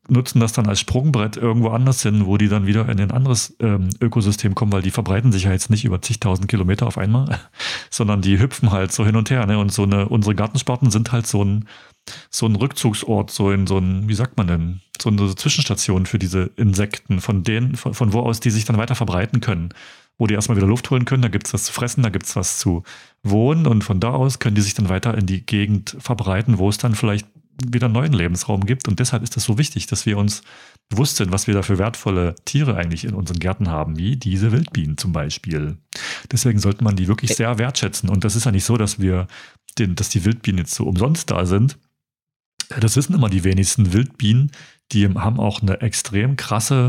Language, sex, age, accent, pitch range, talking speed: German, male, 40-59, German, 100-120 Hz, 230 wpm